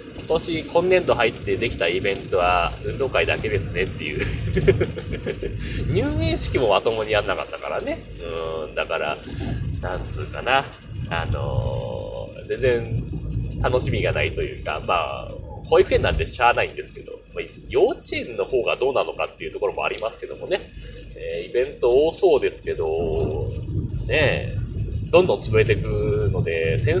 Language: Japanese